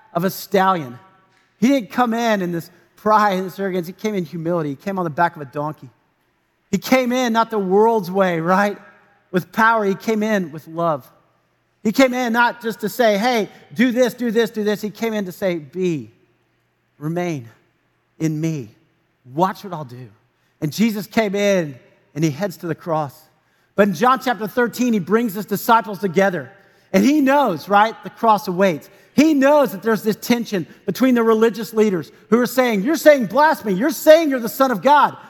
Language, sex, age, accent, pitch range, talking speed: English, male, 40-59, American, 185-260 Hz, 195 wpm